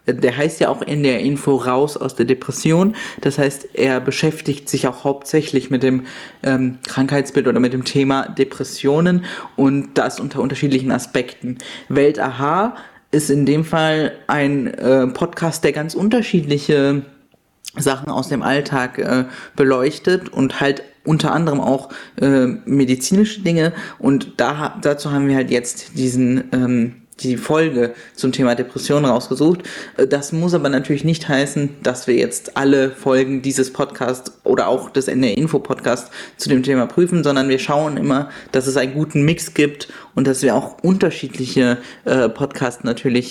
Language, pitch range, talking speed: German, 130-150 Hz, 155 wpm